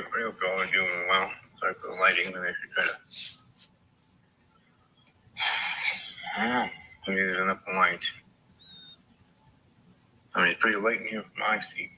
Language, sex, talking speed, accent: English, male, 85 wpm, American